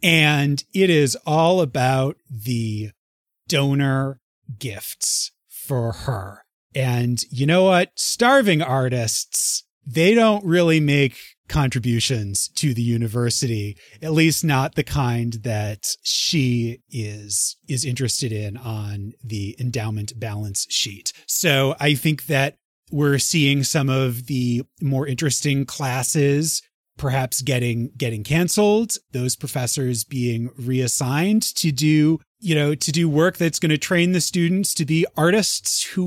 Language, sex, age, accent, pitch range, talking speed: English, male, 30-49, American, 120-160 Hz, 130 wpm